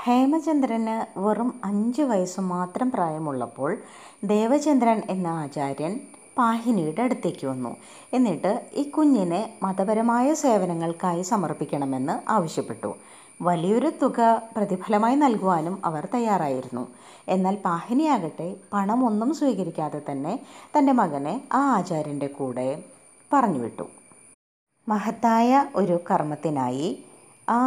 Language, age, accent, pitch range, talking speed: Malayalam, 20-39, native, 160-250 Hz, 90 wpm